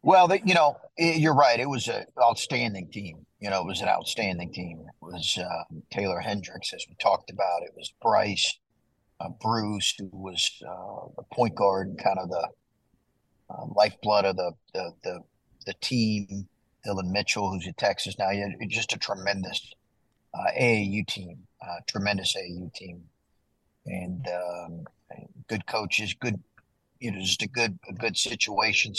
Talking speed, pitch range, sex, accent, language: 165 wpm, 90-115 Hz, male, American, English